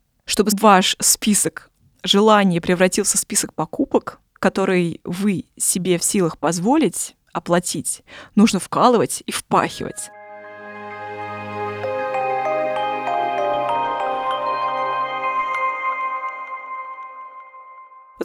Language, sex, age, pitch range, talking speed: Russian, female, 20-39, 170-235 Hz, 60 wpm